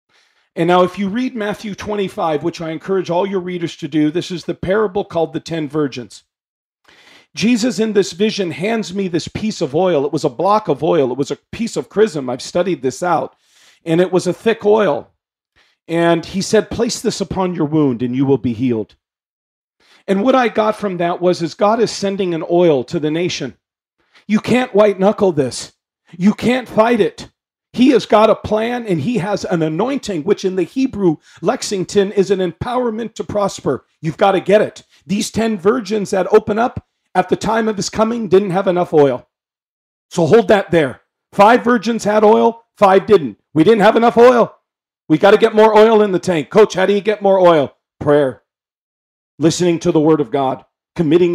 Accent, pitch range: American, 165-215 Hz